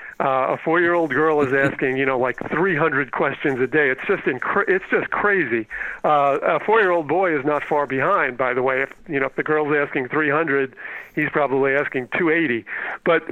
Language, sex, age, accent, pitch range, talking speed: English, male, 40-59, American, 135-155 Hz, 245 wpm